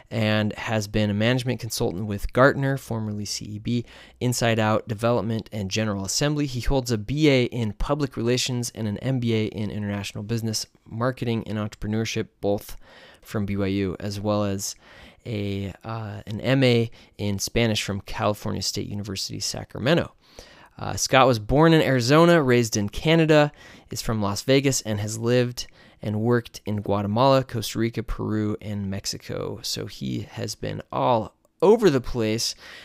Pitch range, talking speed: 105-125 Hz, 150 wpm